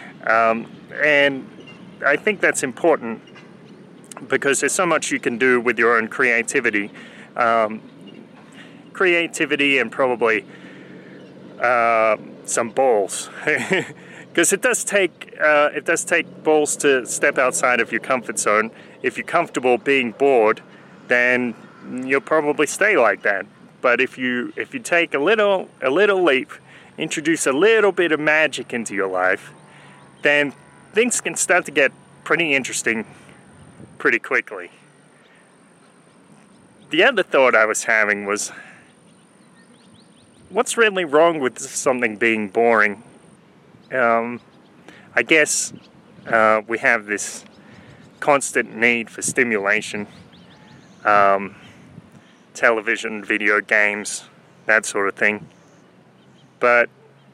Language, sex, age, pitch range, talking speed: English, male, 30-49, 115-170 Hz, 120 wpm